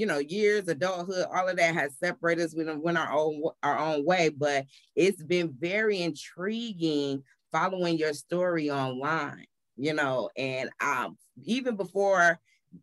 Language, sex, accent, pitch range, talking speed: English, female, American, 145-180 Hz, 145 wpm